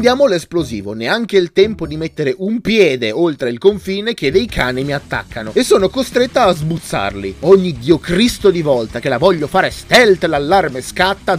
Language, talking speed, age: Italian, 180 wpm, 30-49